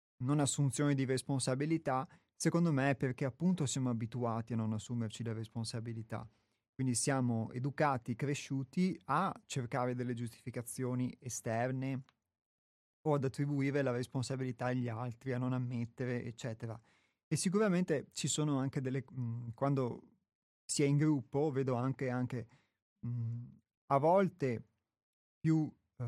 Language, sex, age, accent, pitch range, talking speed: Italian, male, 30-49, native, 115-135 Hz, 125 wpm